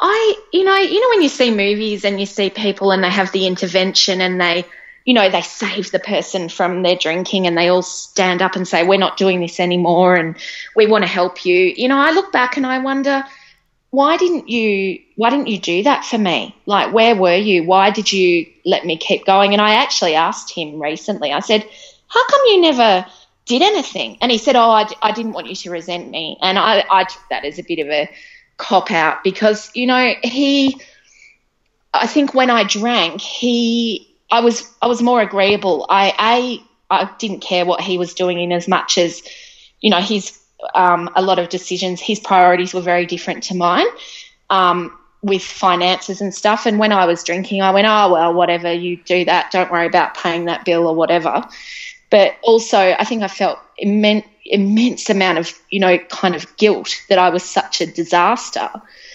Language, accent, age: English, Australian, 20-39